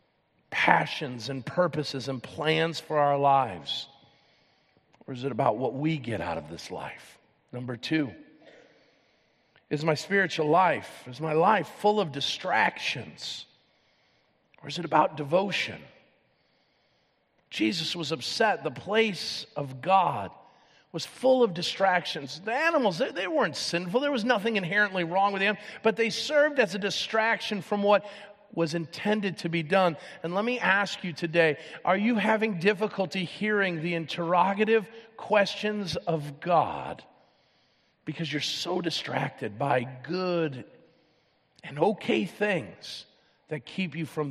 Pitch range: 145-200 Hz